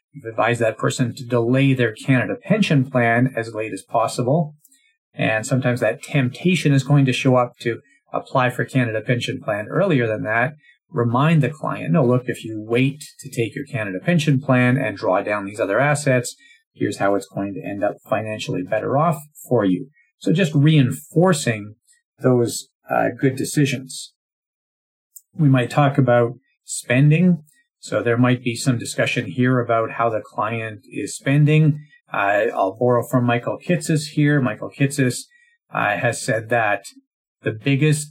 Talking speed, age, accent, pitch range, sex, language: 165 wpm, 40-59, American, 115-145 Hz, male, English